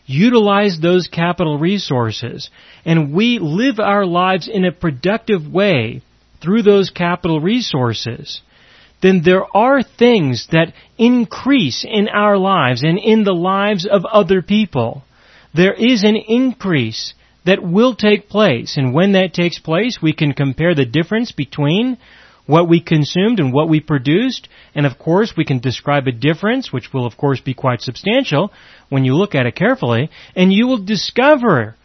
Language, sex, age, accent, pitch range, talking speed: English, male, 40-59, American, 140-205 Hz, 160 wpm